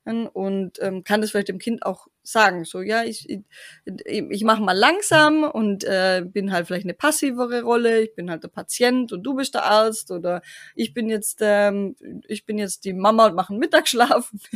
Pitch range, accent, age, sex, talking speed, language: 200-255 Hz, German, 20-39, female, 200 wpm, German